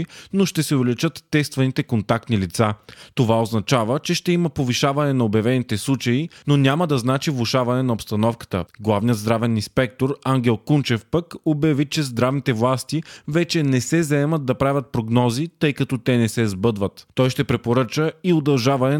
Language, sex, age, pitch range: Bulgarian, male, 30-49, 115-145 Hz